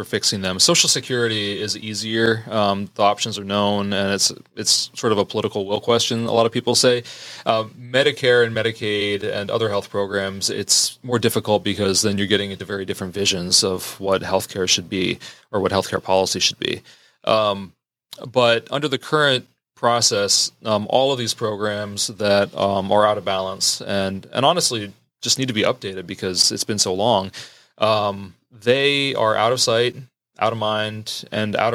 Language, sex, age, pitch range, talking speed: English, male, 30-49, 100-120 Hz, 185 wpm